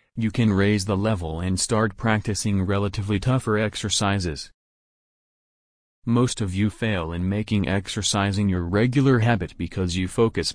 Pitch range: 95-115 Hz